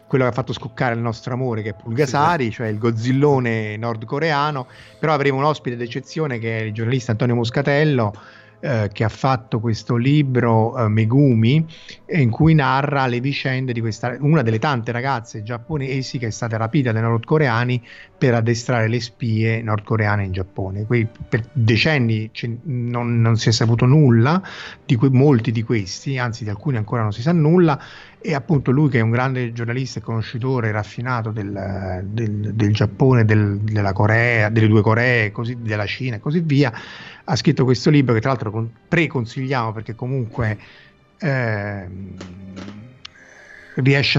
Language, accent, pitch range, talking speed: Italian, native, 110-130 Hz, 165 wpm